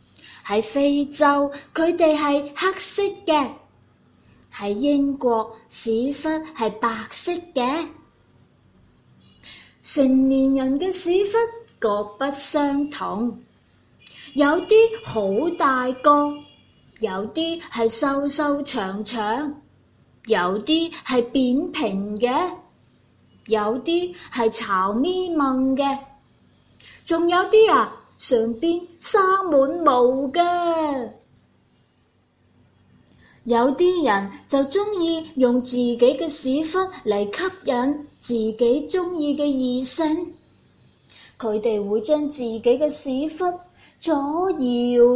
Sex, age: female, 20-39